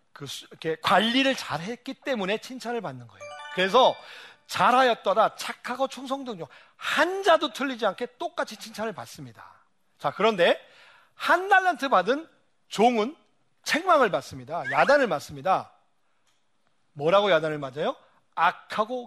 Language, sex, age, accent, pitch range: Korean, male, 40-59, native, 175-260 Hz